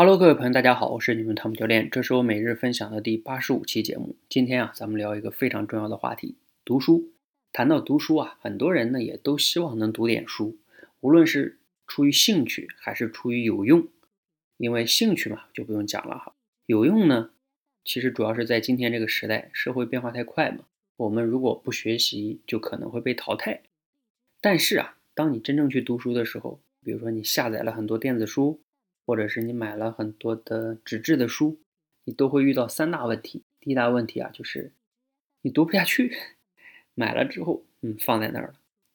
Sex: male